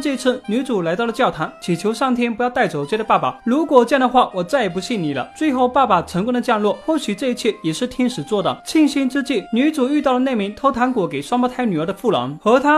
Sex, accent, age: male, native, 20-39